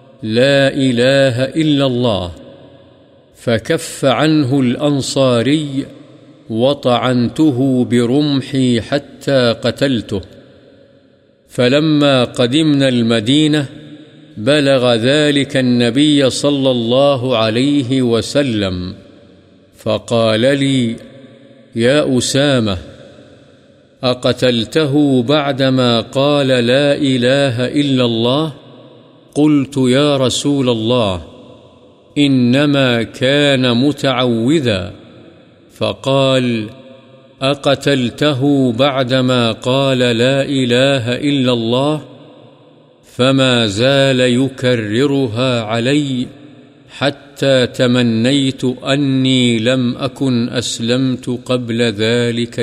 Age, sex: 50-69, male